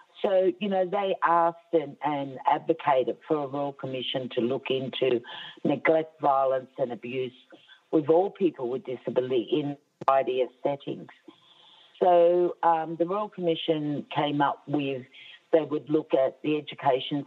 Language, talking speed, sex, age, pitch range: English, 145 wpm, female, 50-69, 140-170 Hz